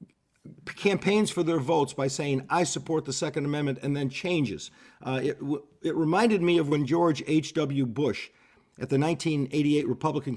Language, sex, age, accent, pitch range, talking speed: English, male, 50-69, American, 130-170 Hz, 160 wpm